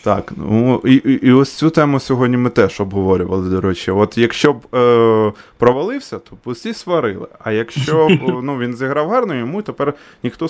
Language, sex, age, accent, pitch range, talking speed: Ukrainian, male, 20-39, native, 110-170 Hz, 185 wpm